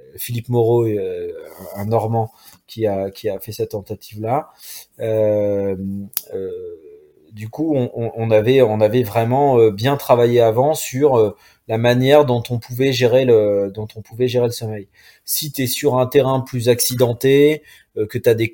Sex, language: male, French